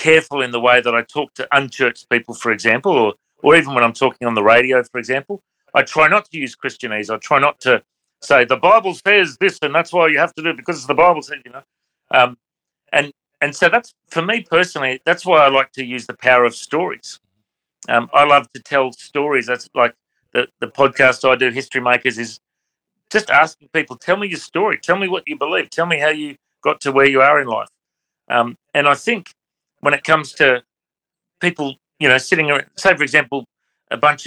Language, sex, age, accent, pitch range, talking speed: English, male, 40-59, Australian, 125-160 Hz, 225 wpm